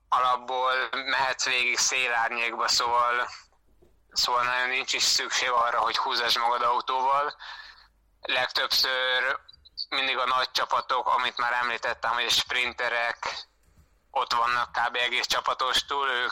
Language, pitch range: Hungarian, 120-130 Hz